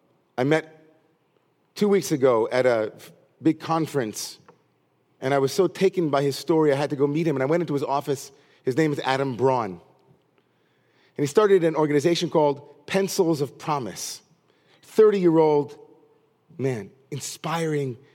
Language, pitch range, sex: English, 140-175 Hz, male